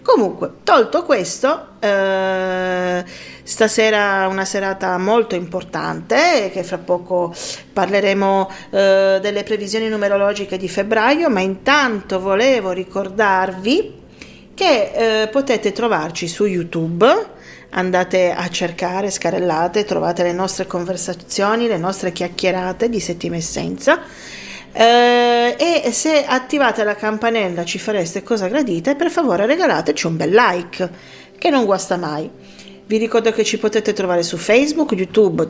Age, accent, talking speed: 40-59, native, 120 wpm